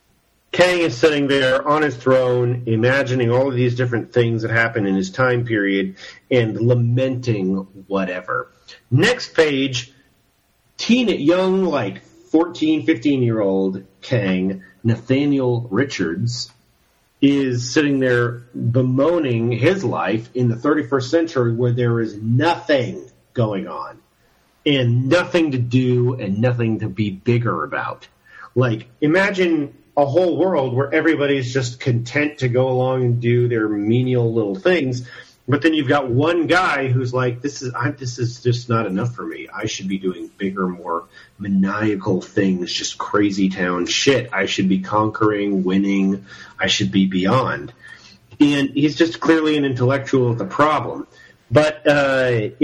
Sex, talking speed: male, 145 wpm